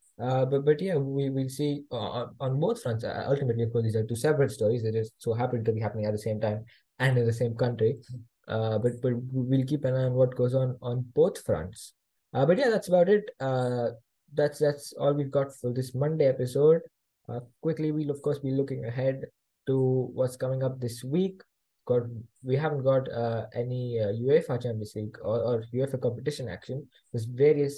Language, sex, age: English, male, 20-39